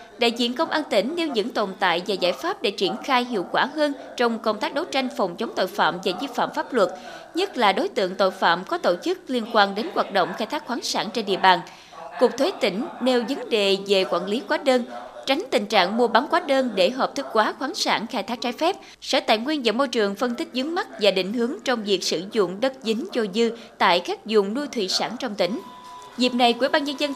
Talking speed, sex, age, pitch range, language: 255 wpm, female, 20-39, 210-290 Hz, Vietnamese